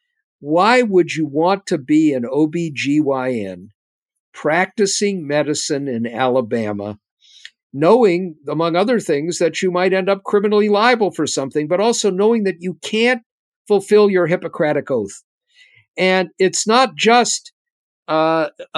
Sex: male